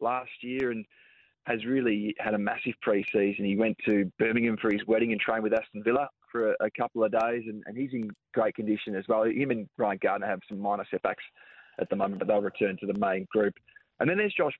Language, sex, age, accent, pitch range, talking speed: English, male, 20-39, Australian, 105-120 Hz, 235 wpm